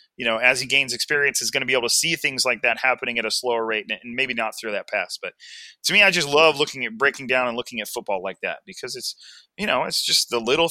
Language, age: English, 30-49